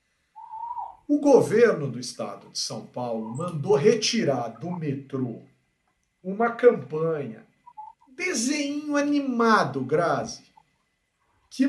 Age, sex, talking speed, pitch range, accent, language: 50-69, male, 80 wpm, 175-285 Hz, Brazilian, Portuguese